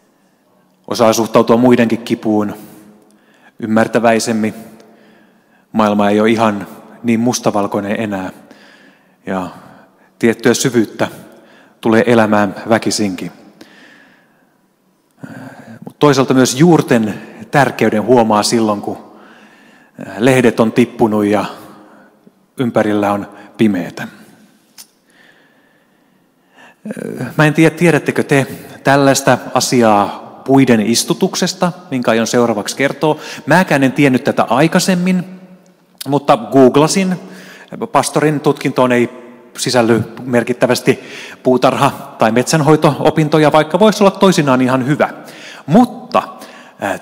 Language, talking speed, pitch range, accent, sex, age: Finnish, 90 wpm, 110-155 Hz, native, male, 30-49